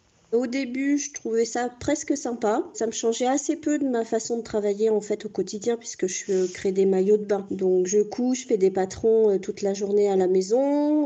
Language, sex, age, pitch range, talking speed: French, female, 40-59, 205-245 Hz, 220 wpm